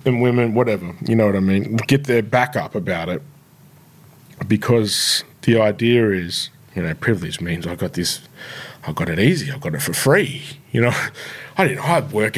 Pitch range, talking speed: 110-145 Hz, 195 wpm